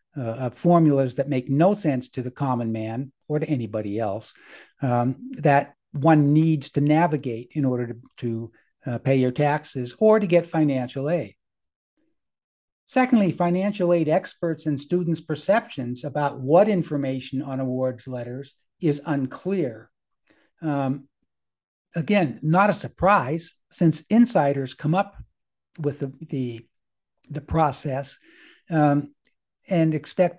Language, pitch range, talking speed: English, 130-175 Hz, 125 wpm